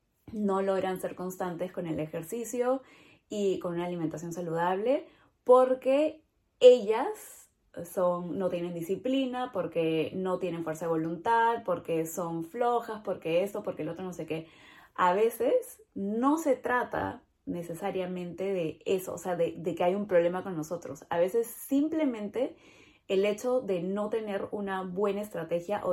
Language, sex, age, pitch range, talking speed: Spanish, female, 20-39, 175-215 Hz, 150 wpm